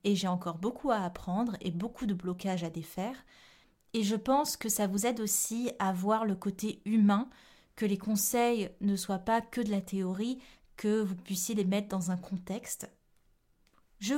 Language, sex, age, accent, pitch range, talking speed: French, female, 20-39, French, 195-230 Hz, 185 wpm